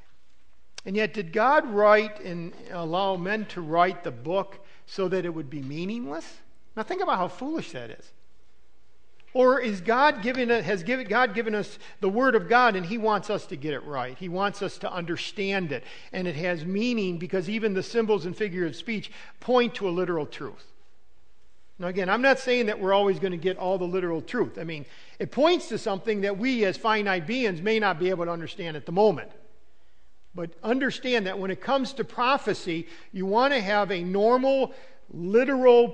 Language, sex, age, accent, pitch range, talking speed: English, male, 50-69, American, 180-230 Hz, 200 wpm